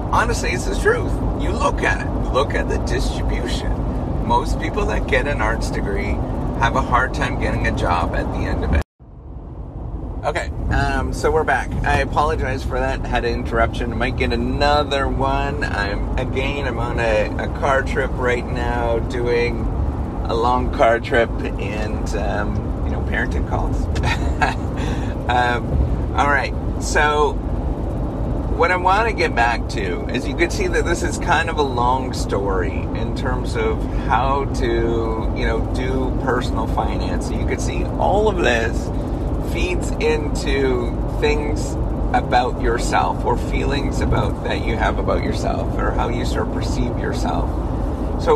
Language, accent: English, American